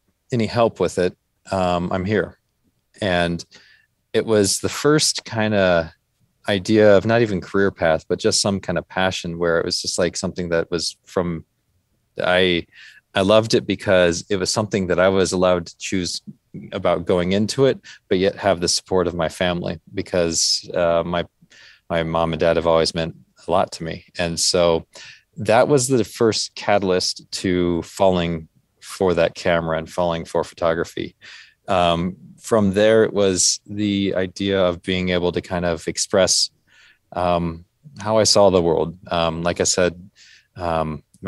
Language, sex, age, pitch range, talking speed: English, male, 30-49, 85-100 Hz, 170 wpm